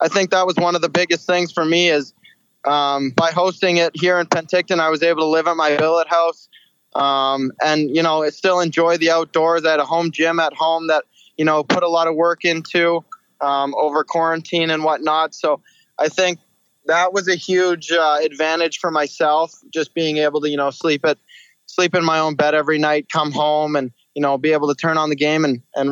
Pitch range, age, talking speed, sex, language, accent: 150-165 Hz, 20-39, 220 wpm, male, English, American